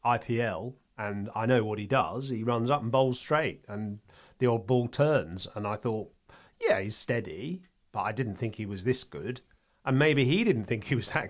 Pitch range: 110-135 Hz